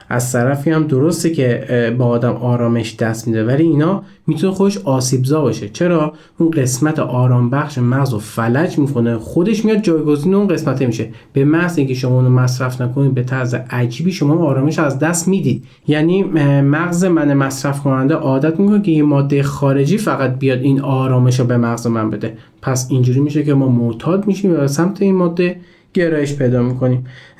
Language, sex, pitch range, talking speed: Persian, male, 120-165 Hz, 175 wpm